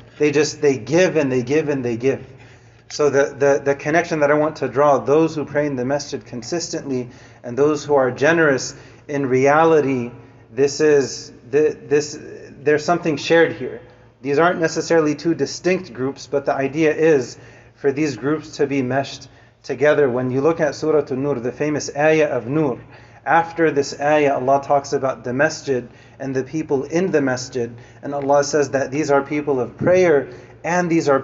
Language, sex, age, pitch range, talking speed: English, male, 30-49, 130-155 Hz, 185 wpm